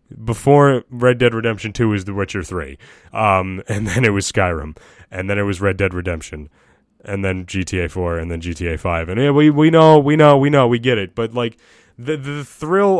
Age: 20-39